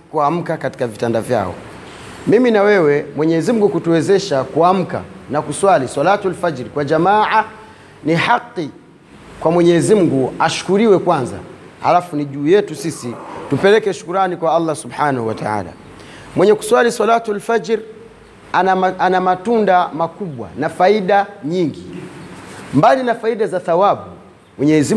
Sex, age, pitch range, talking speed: male, 30-49, 155-215 Hz, 125 wpm